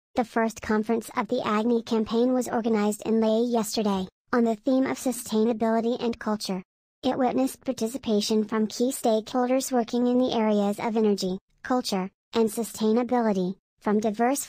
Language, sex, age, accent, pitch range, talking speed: English, male, 40-59, American, 220-245 Hz, 150 wpm